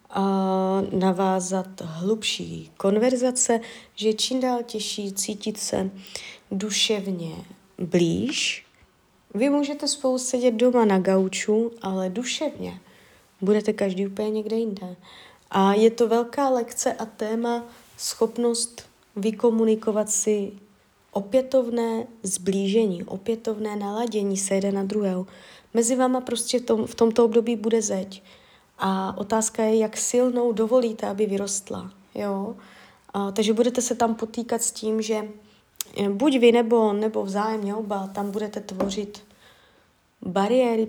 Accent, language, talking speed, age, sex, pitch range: native, Czech, 120 wpm, 20-39, female, 195-235 Hz